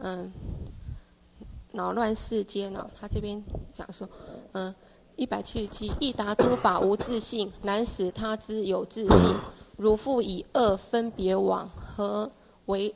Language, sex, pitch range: Chinese, female, 195-230 Hz